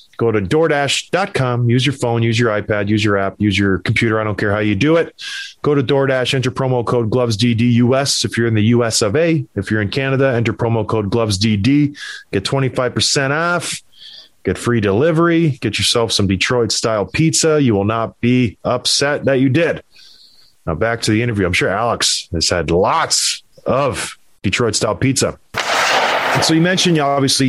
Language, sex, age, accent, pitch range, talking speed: English, male, 30-49, American, 115-155 Hz, 175 wpm